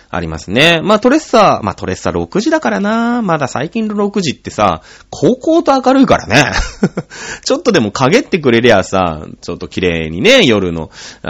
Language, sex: Japanese, male